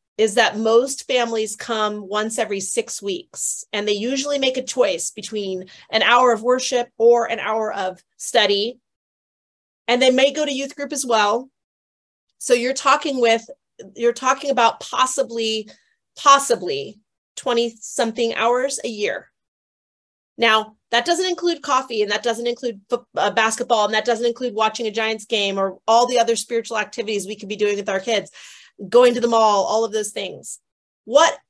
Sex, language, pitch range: female, English, 215-255 Hz